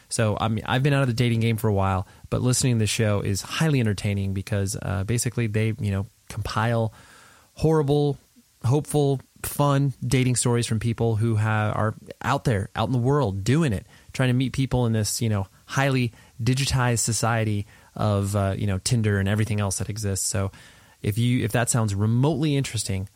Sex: male